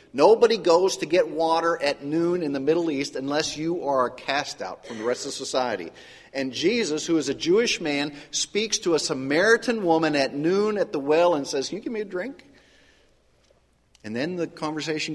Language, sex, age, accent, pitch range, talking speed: English, male, 50-69, American, 125-170 Hz, 200 wpm